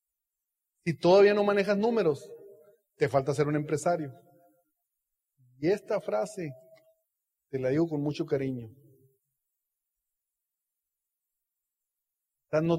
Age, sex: 40-59, male